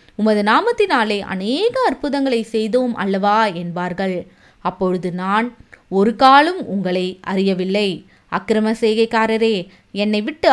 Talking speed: 90 wpm